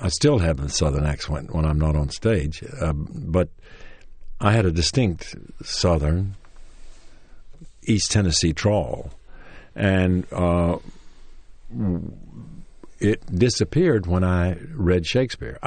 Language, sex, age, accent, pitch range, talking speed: English, male, 60-79, American, 80-110 Hz, 115 wpm